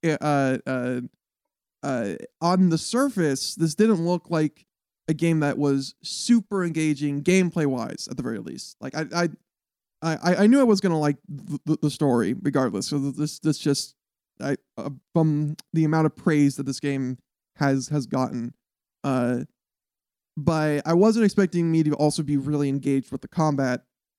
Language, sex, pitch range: English, male, 135-165 Hz